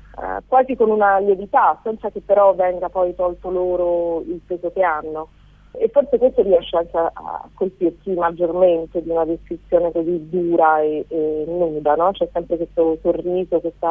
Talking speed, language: 170 wpm, Italian